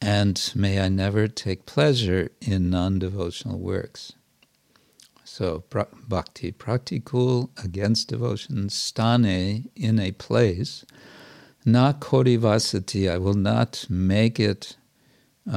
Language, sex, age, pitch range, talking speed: English, male, 60-79, 95-125 Hz, 100 wpm